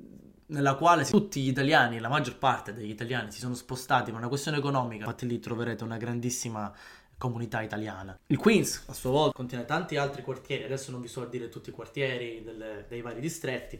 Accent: native